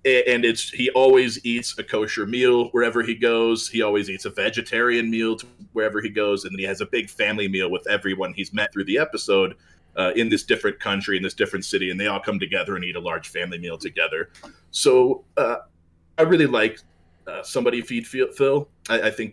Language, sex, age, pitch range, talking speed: English, male, 30-49, 100-125 Hz, 210 wpm